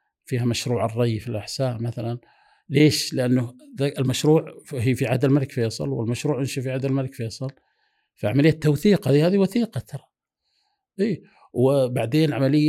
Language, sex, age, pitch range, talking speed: Arabic, male, 50-69, 110-140 Hz, 140 wpm